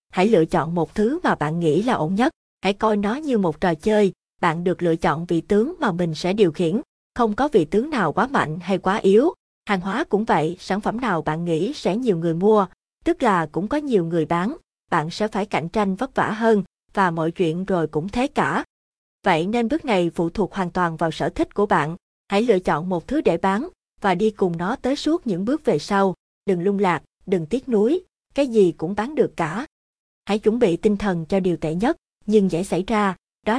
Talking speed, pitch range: 230 wpm, 175-220 Hz